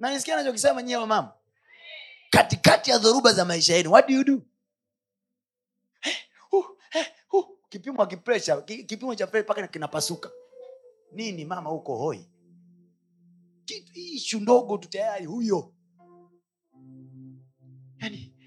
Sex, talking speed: male, 125 wpm